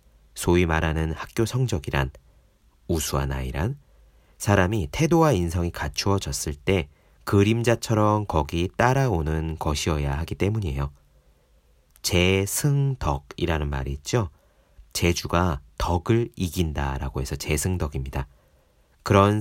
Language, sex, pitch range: Korean, male, 75-120 Hz